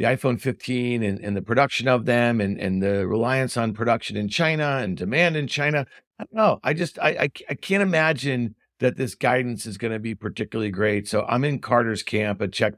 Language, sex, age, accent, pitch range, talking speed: English, male, 50-69, American, 110-140 Hz, 205 wpm